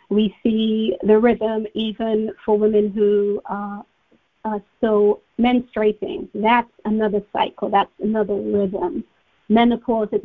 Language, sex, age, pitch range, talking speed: English, female, 40-59, 205-230 Hz, 115 wpm